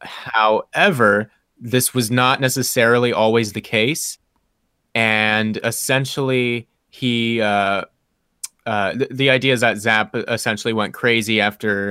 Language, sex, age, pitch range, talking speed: English, male, 30-49, 105-130 Hz, 110 wpm